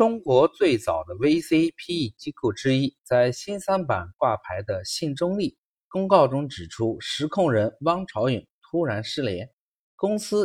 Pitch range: 110-165 Hz